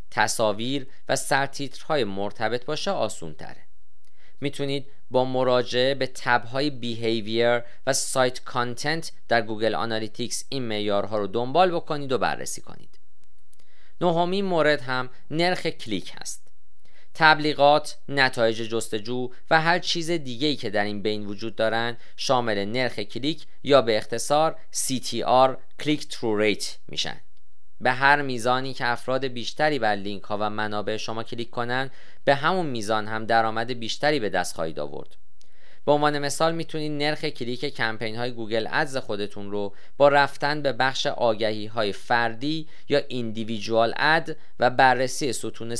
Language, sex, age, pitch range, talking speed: Persian, male, 40-59, 110-145 Hz, 140 wpm